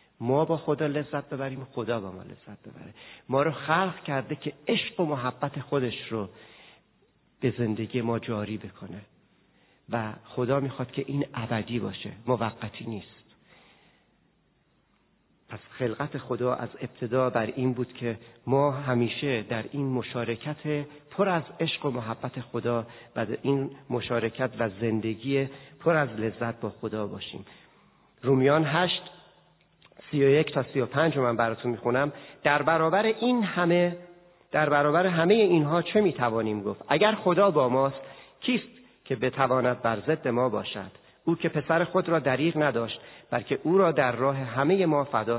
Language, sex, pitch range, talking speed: Persian, male, 120-155 Hz, 145 wpm